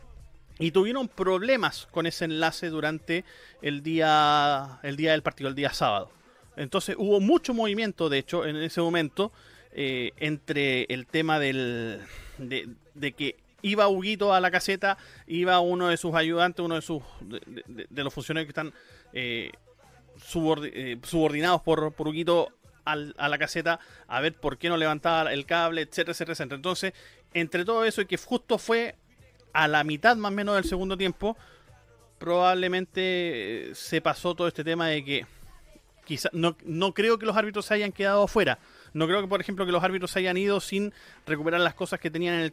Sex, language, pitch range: male, Spanish, 145-185 Hz